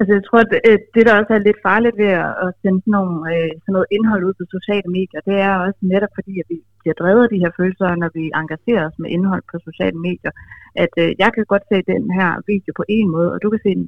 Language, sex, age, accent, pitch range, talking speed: Danish, female, 30-49, native, 175-195 Hz, 270 wpm